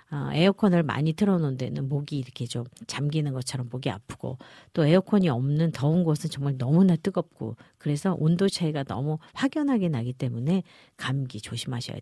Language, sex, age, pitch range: Korean, female, 50-69, 135-200 Hz